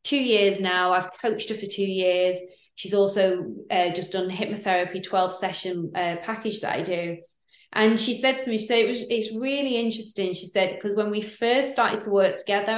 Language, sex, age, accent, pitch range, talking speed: English, female, 20-39, British, 185-225 Hz, 210 wpm